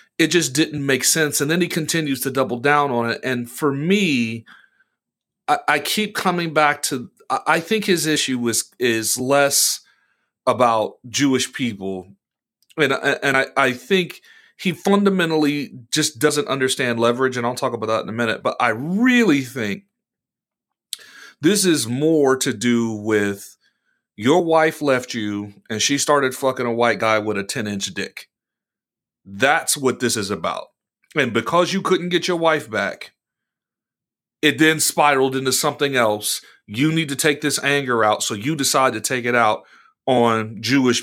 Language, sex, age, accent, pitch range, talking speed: English, male, 40-59, American, 120-155 Hz, 165 wpm